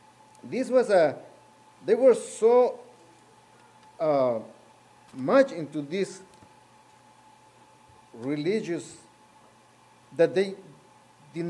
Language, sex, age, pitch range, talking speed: English, male, 50-69, 145-195 Hz, 75 wpm